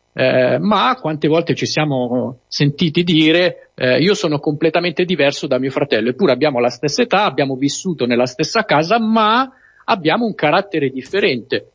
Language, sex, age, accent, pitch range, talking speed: Italian, male, 50-69, native, 130-185 Hz, 160 wpm